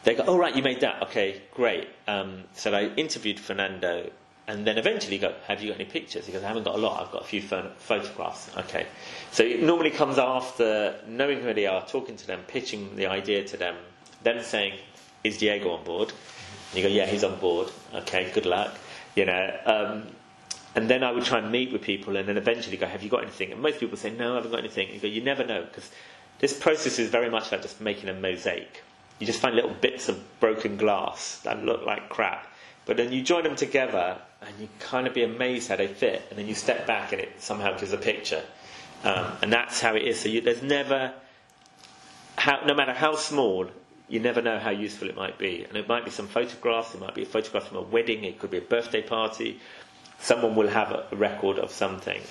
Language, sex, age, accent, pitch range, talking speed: English, male, 40-59, British, 105-130 Hz, 230 wpm